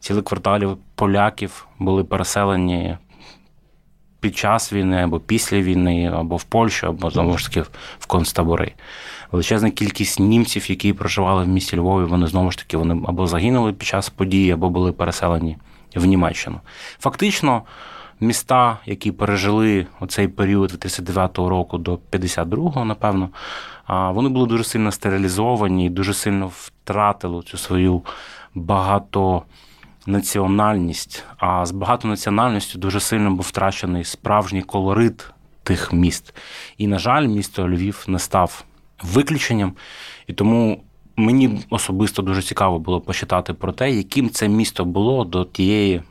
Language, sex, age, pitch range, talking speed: Ukrainian, male, 20-39, 90-110 Hz, 130 wpm